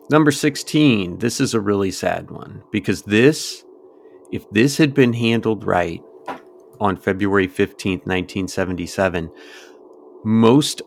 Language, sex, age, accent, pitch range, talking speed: English, male, 30-49, American, 95-130 Hz, 115 wpm